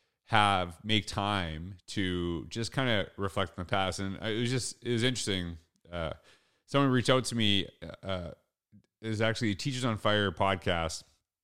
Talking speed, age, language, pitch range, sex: 175 wpm, 30-49, English, 95-115 Hz, male